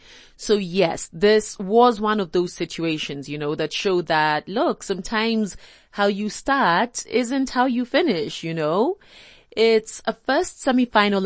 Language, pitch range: English, 170-245 Hz